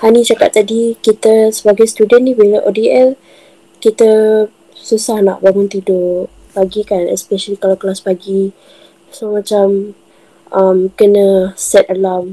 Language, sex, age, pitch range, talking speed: Malay, female, 20-39, 195-225 Hz, 125 wpm